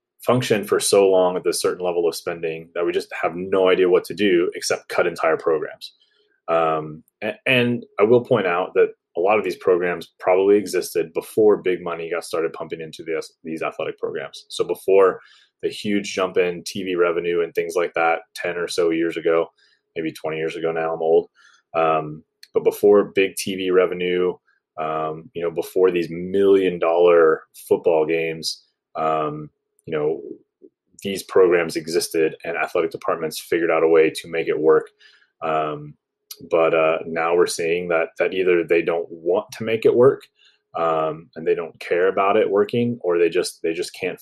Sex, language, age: male, English, 20-39